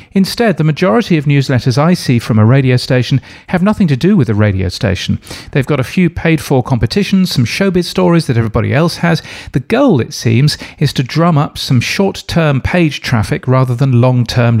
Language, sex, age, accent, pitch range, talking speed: English, male, 40-59, British, 120-160 Hz, 195 wpm